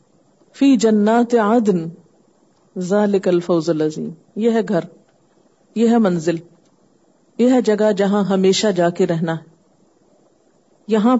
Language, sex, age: Urdu, female, 50-69